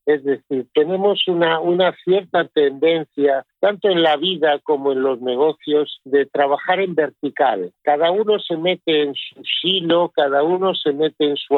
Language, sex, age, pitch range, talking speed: Spanish, male, 50-69, 140-175 Hz, 165 wpm